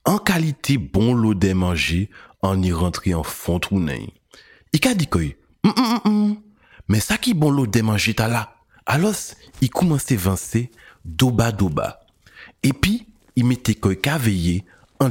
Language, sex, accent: French, male, French